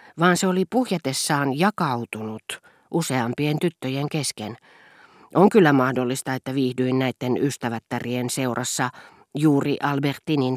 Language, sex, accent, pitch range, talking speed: Finnish, female, native, 125-175 Hz, 100 wpm